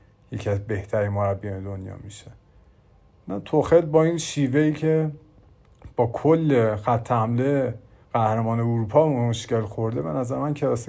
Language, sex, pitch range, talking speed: Persian, male, 110-140 Hz, 140 wpm